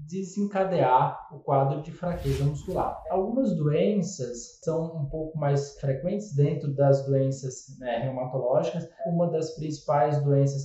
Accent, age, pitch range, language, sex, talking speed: Brazilian, 20-39, 140-175 Hz, Portuguese, male, 125 wpm